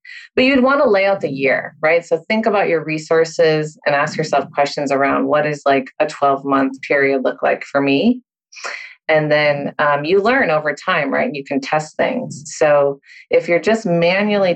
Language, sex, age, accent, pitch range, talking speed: English, female, 30-49, American, 140-170 Hz, 195 wpm